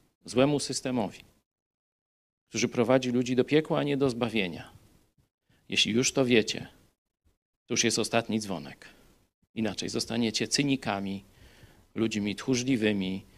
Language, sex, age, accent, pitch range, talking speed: Polish, male, 40-59, native, 100-125 Hz, 110 wpm